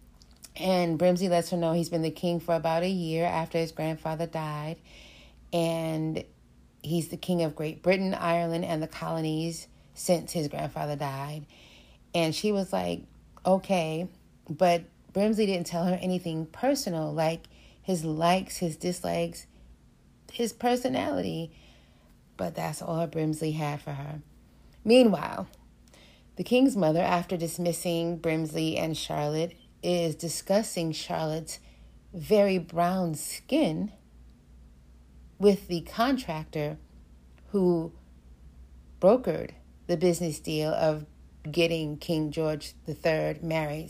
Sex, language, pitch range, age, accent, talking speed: female, English, 140-175 Hz, 30-49, American, 120 wpm